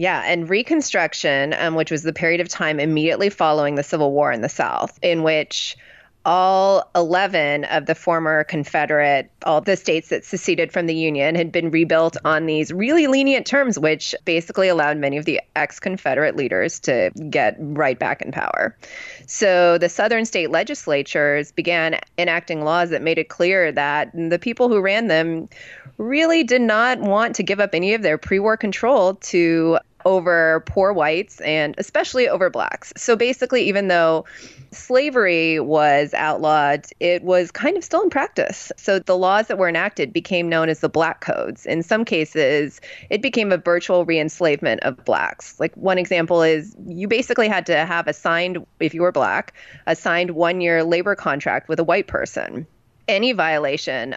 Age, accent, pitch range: 20-39, American, 155-195 Hz